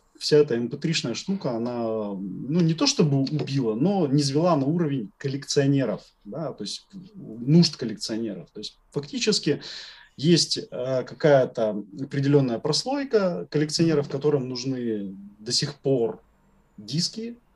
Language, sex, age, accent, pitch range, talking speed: Russian, male, 30-49, native, 130-180 Hz, 120 wpm